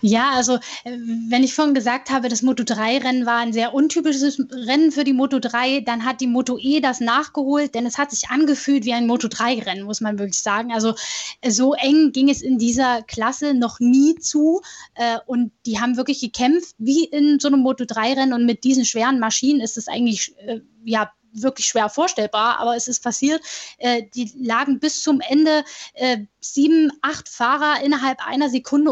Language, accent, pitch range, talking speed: German, German, 235-285 Hz, 180 wpm